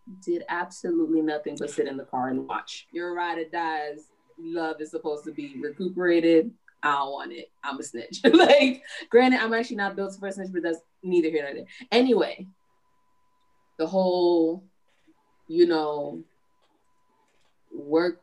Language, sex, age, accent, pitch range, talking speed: English, female, 20-39, American, 160-215 Hz, 160 wpm